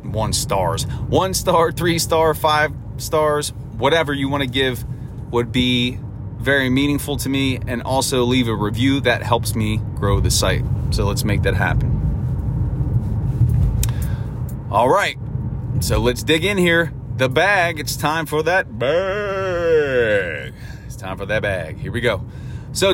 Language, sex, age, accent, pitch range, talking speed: English, male, 30-49, American, 115-140 Hz, 150 wpm